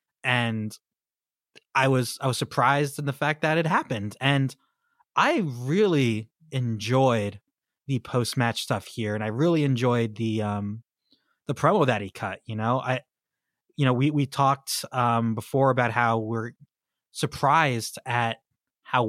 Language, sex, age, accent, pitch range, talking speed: English, male, 20-39, American, 120-150 Hz, 150 wpm